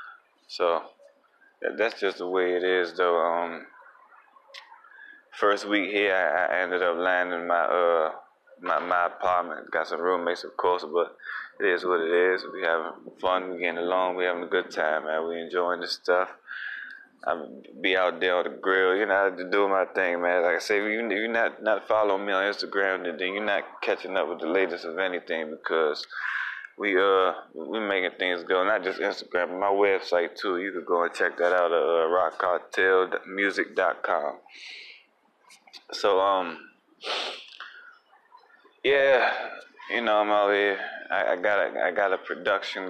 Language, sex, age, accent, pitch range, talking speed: English, male, 20-39, American, 90-110 Hz, 180 wpm